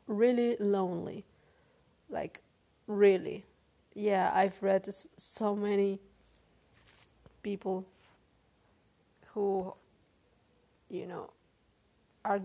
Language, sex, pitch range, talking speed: English, female, 195-225 Hz, 65 wpm